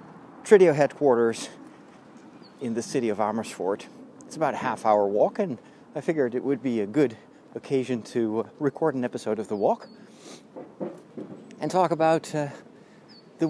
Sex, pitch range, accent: male, 125-165 Hz, American